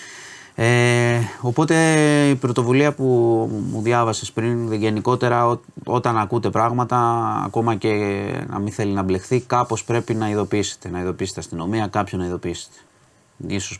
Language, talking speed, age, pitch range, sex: Greek, 140 wpm, 30-49, 100-130 Hz, male